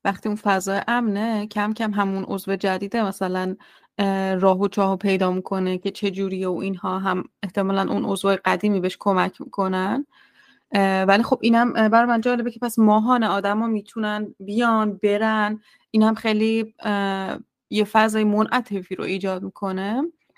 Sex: female